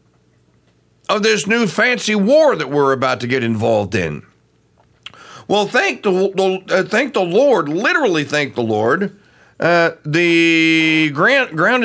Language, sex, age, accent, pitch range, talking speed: English, male, 50-69, American, 135-190 Hz, 140 wpm